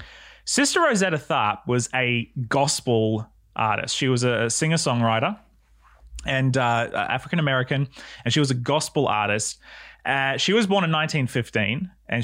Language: English